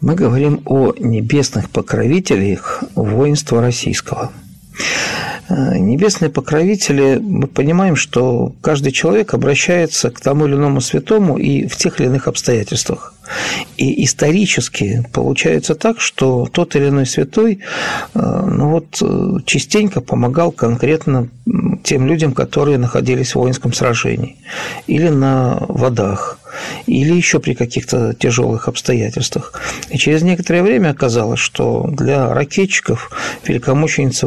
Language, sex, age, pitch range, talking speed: Russian, male, 50-69, 125-165 Hz, 115 wpm